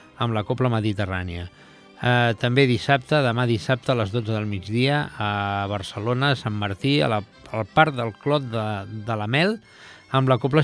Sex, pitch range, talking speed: male, 110-140 Hz, 170 wpm